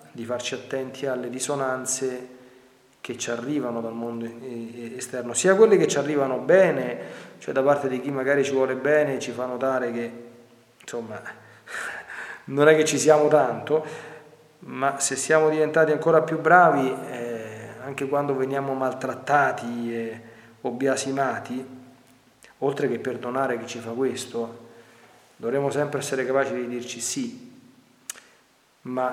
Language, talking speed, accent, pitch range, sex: Italian, 140 wpm, native, 115-145 Hz, male